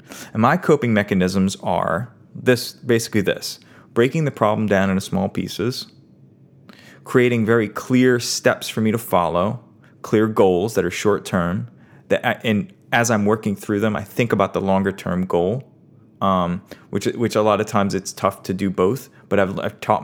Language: English